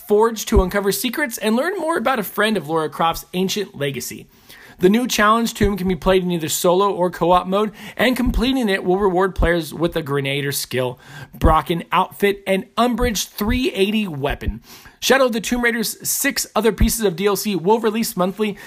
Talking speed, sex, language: 185 wpm, male, English